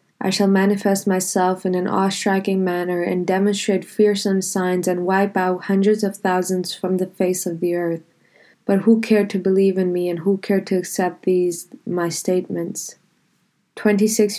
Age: 20-39